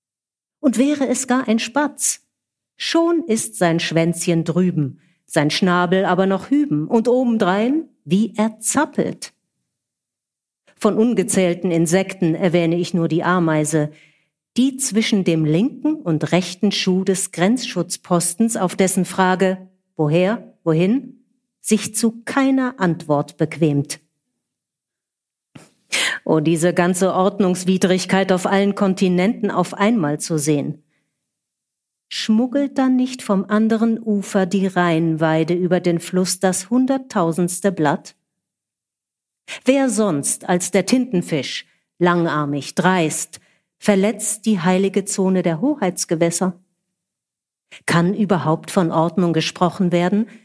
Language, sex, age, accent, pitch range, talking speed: German, female, 50-69, German, 170-220 Hz, 110 wpm